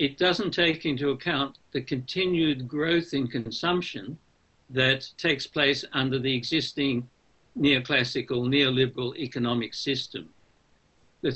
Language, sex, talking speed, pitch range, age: English, male, 110 wpm, 135-175 Hz, 60-79